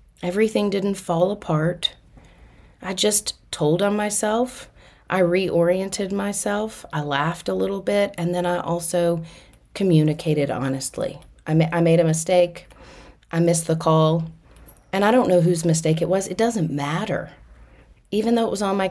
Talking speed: 155 wpm